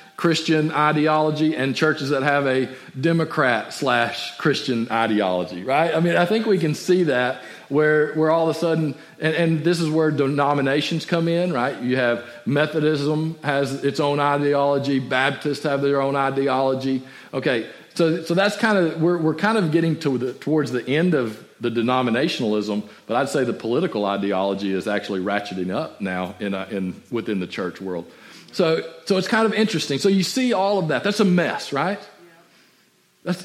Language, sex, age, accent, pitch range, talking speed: English, male, 40-59, American, 130-175 Hz, 180 wpm